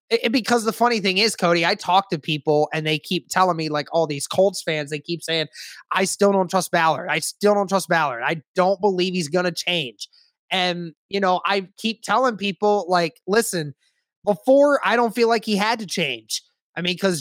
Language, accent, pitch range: English, American, 175-210 Hz